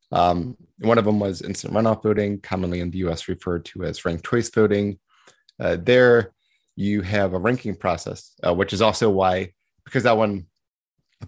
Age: 30-49